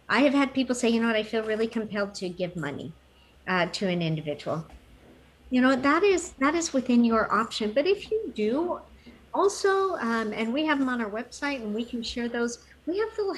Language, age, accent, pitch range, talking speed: English, 50-69, American, 180-250 Hz, 220 wpm